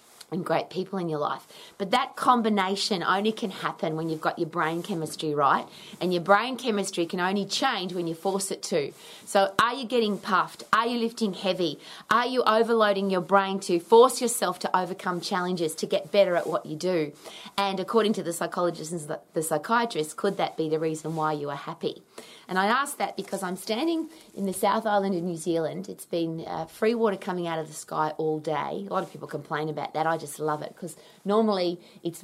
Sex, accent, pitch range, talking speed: female, Australian, 165-205 Hz, 215 wpm